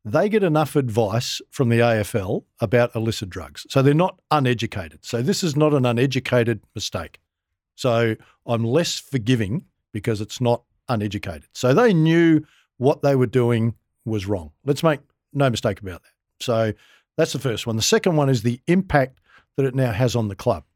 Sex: male